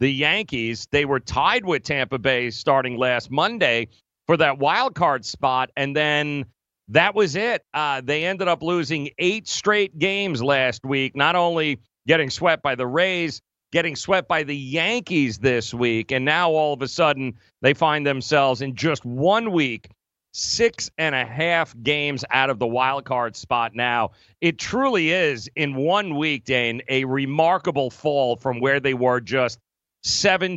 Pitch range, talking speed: 130-190 Hz, 170 wpm